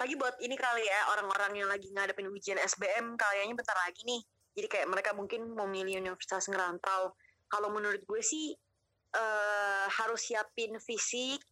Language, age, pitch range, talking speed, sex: Indonesian, 20-39, 190-220 Hz, 160 wpm, female